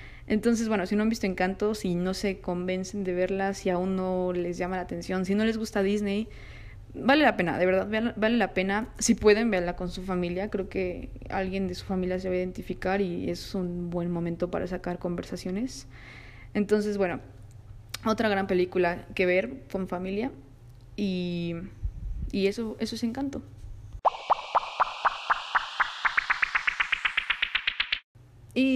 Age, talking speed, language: 20-39, 155 wpm, Spanish